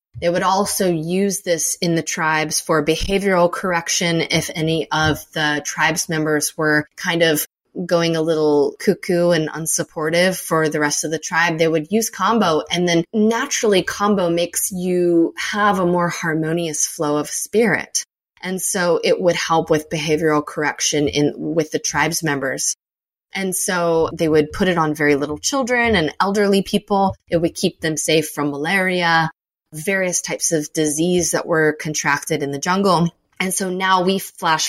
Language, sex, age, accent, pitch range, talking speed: English, female, 20-39, American, 155-185 Hz, 170 wpm